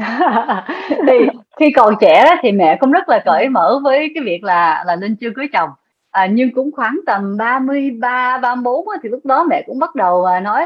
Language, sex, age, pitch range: Vietnamese, female, 20-39, 215-300 Hz